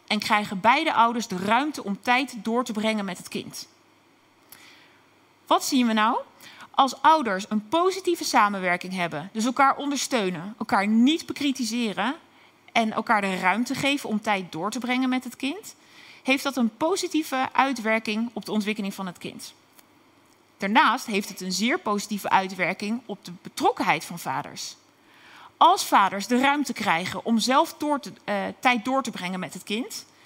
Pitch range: 210-290 Hz